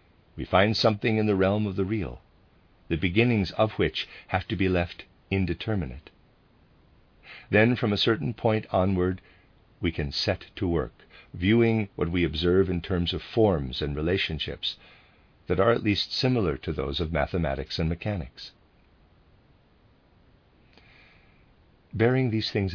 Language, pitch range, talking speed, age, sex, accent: English, 80-110 Hz, 140 wpm, 50-69, male, American